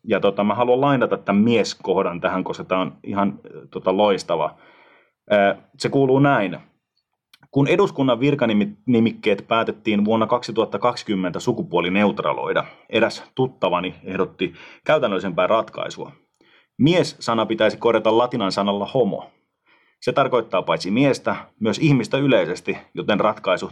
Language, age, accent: Finnish, 30-49, native